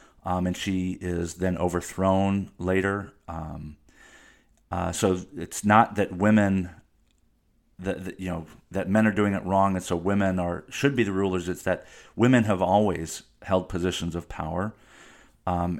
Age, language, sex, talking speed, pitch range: 40-59, English, male, 160 wpm, 85-95 Hz